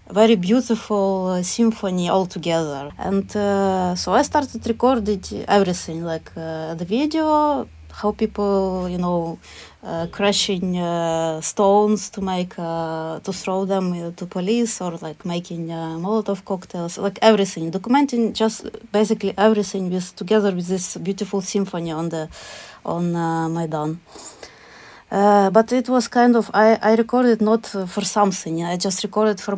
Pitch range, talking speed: 175-215 Hz, 150 wpm